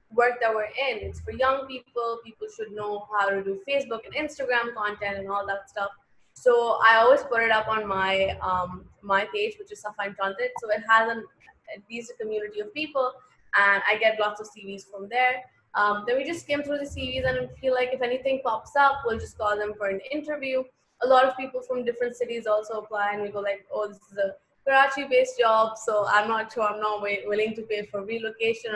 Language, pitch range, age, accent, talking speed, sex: English, 205-255 Hz, 20-39, Indian, 220 wpm, female